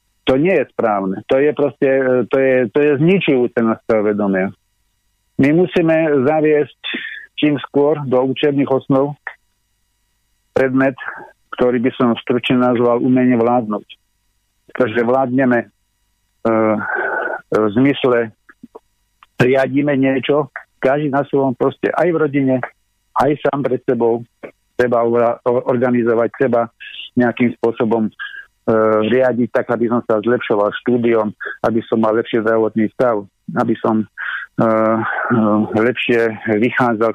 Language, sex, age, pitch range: Slovak, male, 50-69, 110-130 Hz